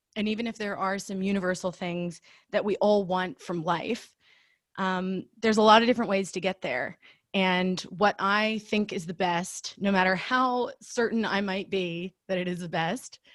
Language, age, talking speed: English, 20-39, 195 wpm